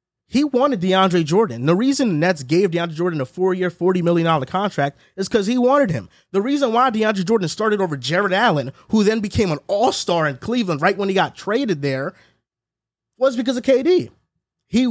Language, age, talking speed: English, 30-49, 190 wpm